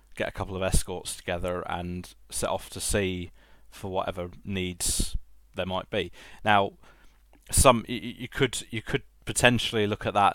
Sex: male